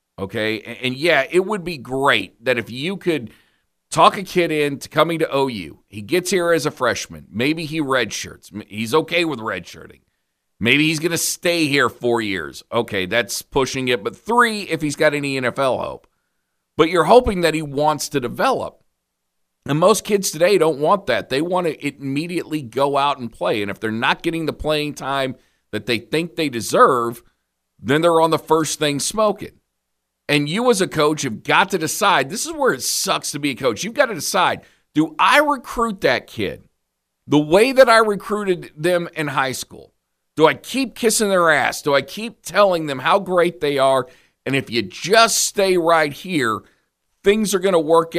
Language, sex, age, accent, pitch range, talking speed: English, male, 40-59, American, 130-175 Hz, 195 wpm